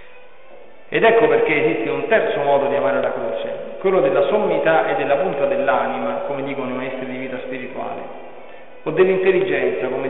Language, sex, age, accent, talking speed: Italian, male, 40-59, native, 165 wpm